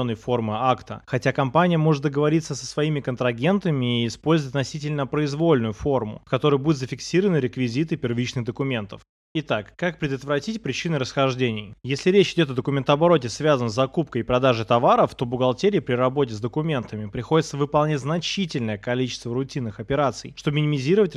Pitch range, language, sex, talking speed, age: 125-155 Hz, Russian, male, 145 wpm, 20-39